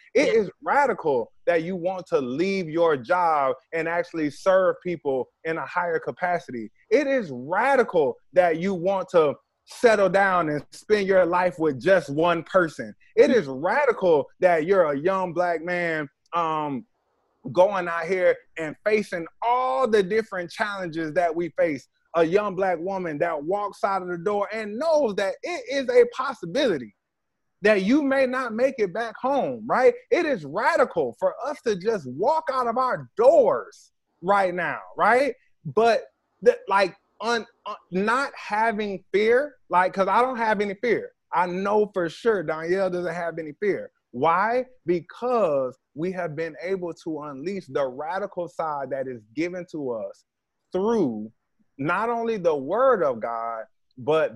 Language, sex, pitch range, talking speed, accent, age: English, male, 170-245 Hz, 160 wpm, American, 20-39